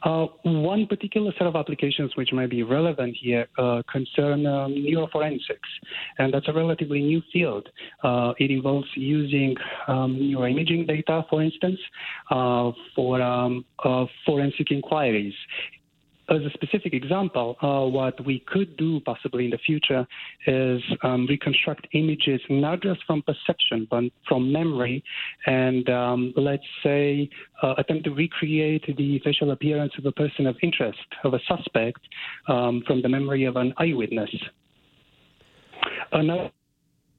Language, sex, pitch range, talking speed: English, male, 130-155 Hz, 140 wpm